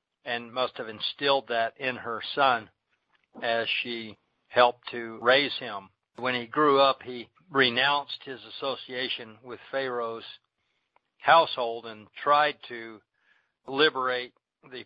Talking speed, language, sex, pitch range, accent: 120 wpm, English, male, 120-140 Hz, American